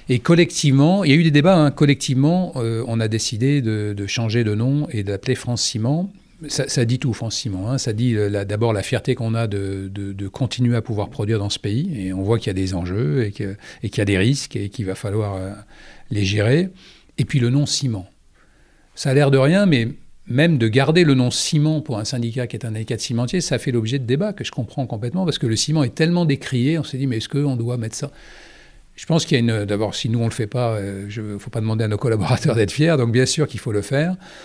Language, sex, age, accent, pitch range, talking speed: French, male, 40-59, French, 110-145 Hz, 265 wpm